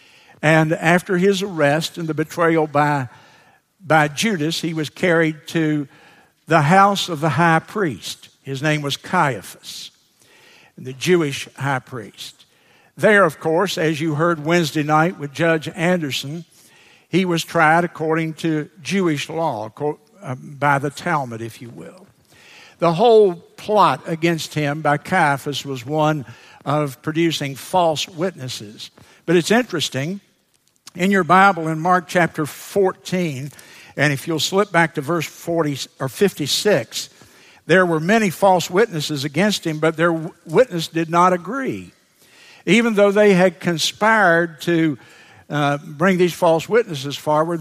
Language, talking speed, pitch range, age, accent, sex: English, 140 wpm, 150-180 Hz, 60-79, American, male